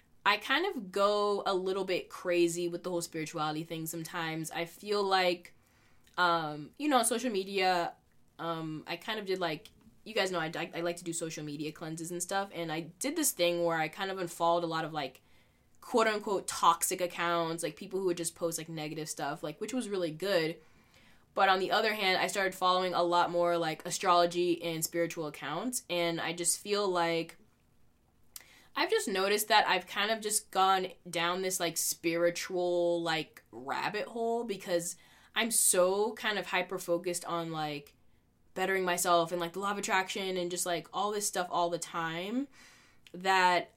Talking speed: 190 wpm